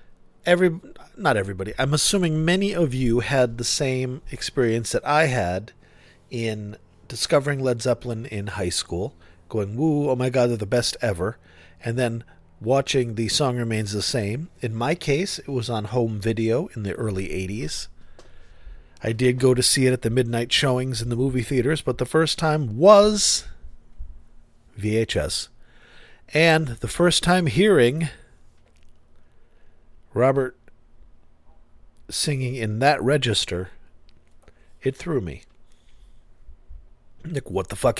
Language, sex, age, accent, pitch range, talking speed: English, male, 40-59, American, 95-145 Hz, 140 wpm